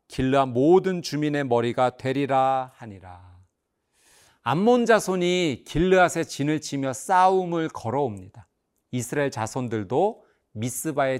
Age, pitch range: 40-59, 120-180 Hz